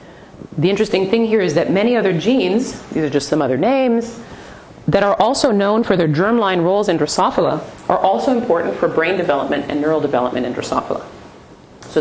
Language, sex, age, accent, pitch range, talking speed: English, female, 30-49, American, 155-210 Hz, 185 wpm